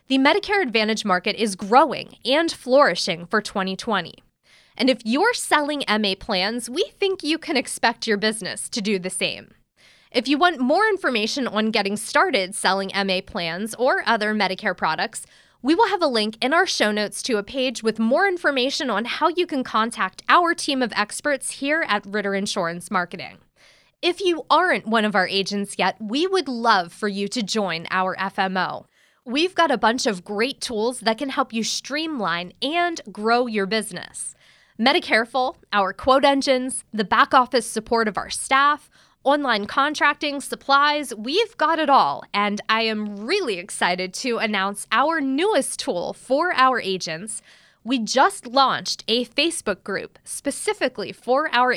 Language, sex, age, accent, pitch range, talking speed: English, female, 20-39, American, 205-280 Hz, 165 wpm